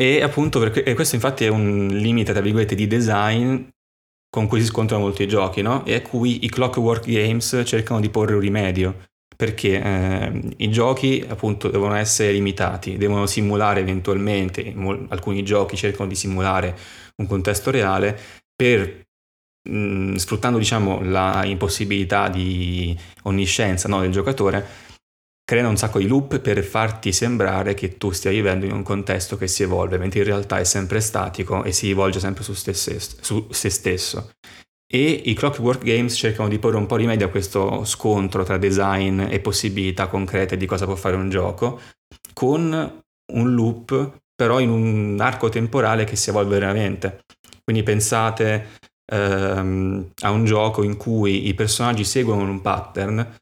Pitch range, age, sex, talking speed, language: 95-115 Hz, 20-39, male, 160 wpm, Italian